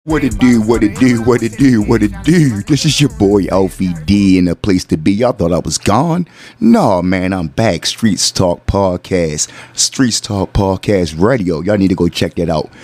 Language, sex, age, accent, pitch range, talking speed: English, male, 30-49, American, 95-115 Hz, 230 wpm